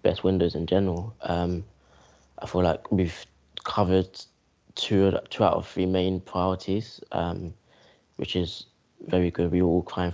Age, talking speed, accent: 20-39, 150 wpm, British